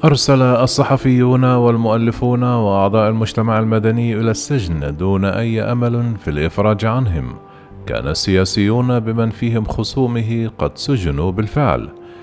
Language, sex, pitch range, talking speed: Arabic, male, 90-120 Hz, 110 wpm